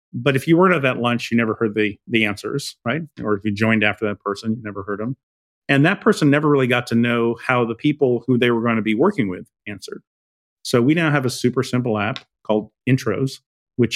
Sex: male